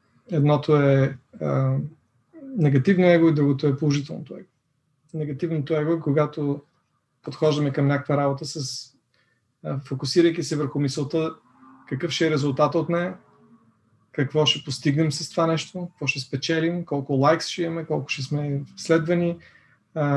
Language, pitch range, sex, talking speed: Bulgarian, 140-165 Hz, male, 145 wpm